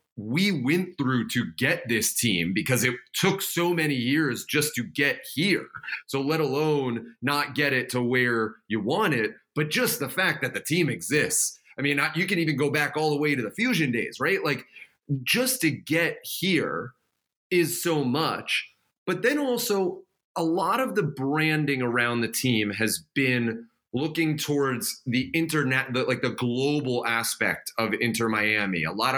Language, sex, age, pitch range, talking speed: English, male, 30-49, 120-150 Hz, 175 wpm